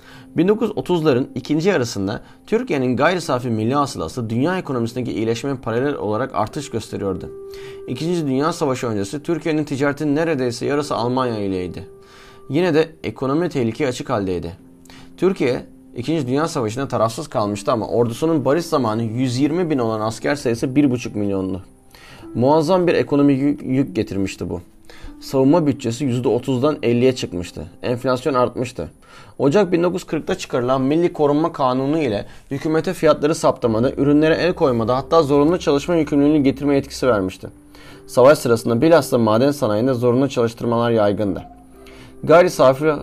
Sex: male